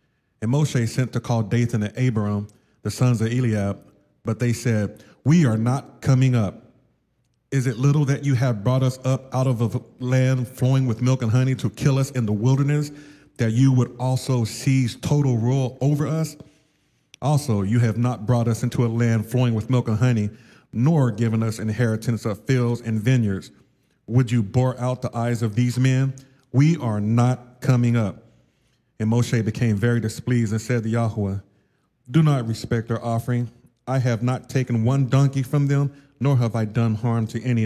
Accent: American